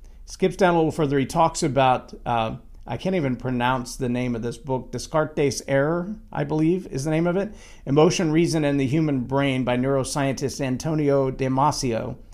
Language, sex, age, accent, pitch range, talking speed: English, male, 50-69, American, 125-160 Hz, 180 wpm